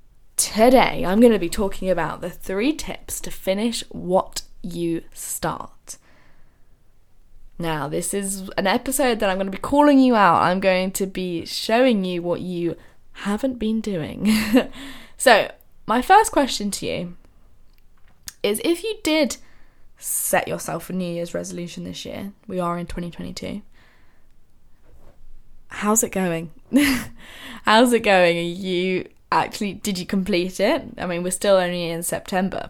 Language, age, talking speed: English, 10-29, 150 wpm